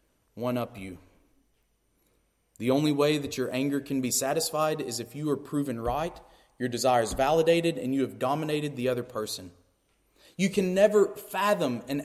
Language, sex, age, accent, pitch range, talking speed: English, male, 30-49, American, 120-165 Hz, 165 wpm